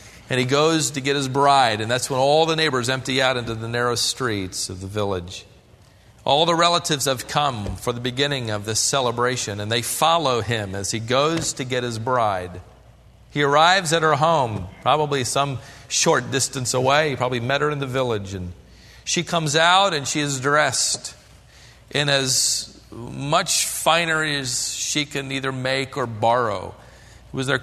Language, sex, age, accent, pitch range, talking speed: English, male, 40-59, American, 125-160 Hz, 180 wpm